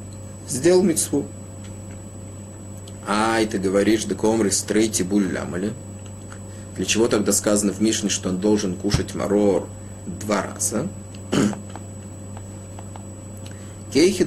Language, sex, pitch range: Russian, male, 100-105 Hz